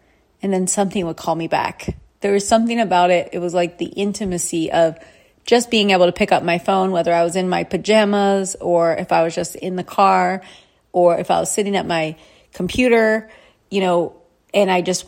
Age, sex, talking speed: 30-49, female, 210 wpm